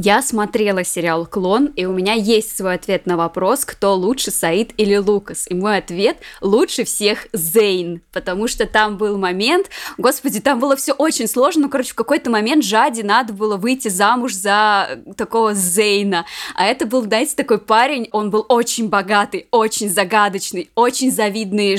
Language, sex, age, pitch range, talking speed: Russian, female, 20-39, 195-245 Hz, 170 wpm